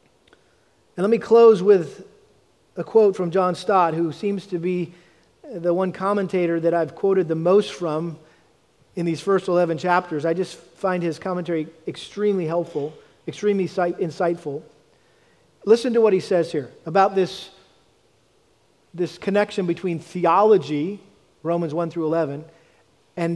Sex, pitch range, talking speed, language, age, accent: male, 170-220 Hz, 140 wpm, English, 40-59, American